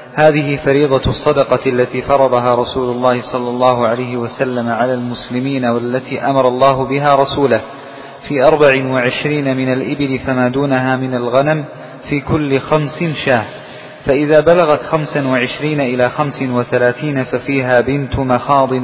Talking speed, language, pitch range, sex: 125 wpm, Arabic, 130-145 Hz, male